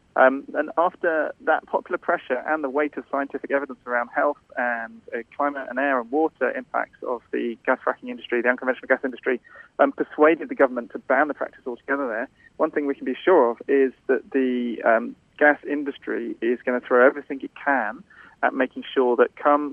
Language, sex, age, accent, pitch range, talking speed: English, male, 30-49, British, 120-140 Hz, 200 wpm